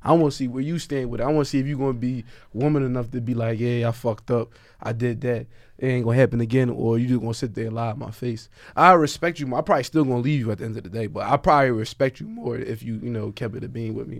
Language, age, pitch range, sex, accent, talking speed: English, 20-39, 115-150 Hz, male, American, 315 wpm